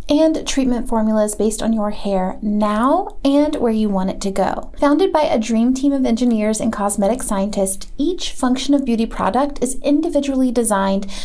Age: 30-49